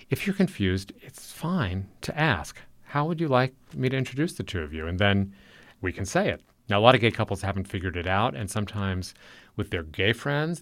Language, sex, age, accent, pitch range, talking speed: English, male, 40-59, American, 95-120 Hz, 225 wpm